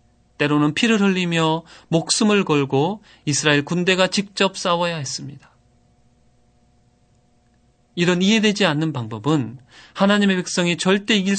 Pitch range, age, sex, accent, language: 135-185 Hz, 30-49, male, native, Korean